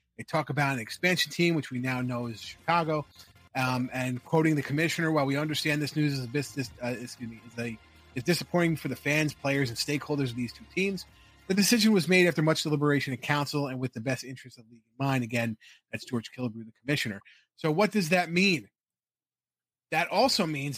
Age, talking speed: 30-49, 215 wpm